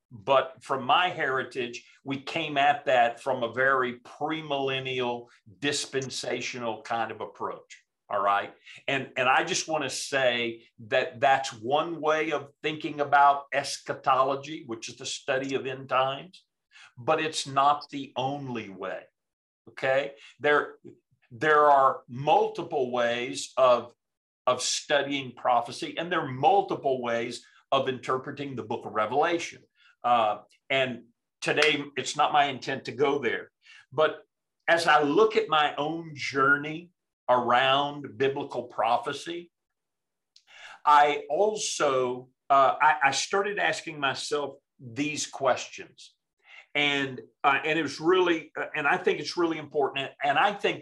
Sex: male